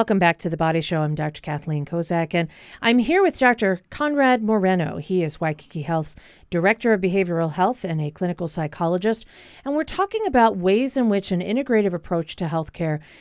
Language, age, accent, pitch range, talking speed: English, 40-59, American, 165-225 Hz, 185 wpm